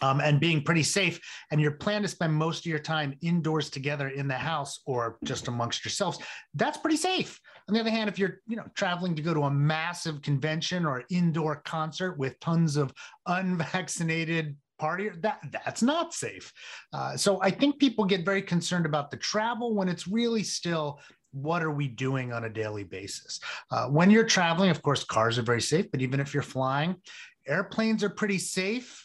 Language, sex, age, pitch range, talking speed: English, male, 30-49, 145-190 Hz, 195 wpm